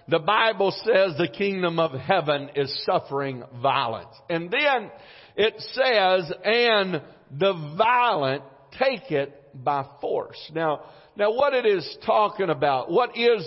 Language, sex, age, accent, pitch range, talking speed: English, male, 50-69, American, 150-200 Hz, 135 wpm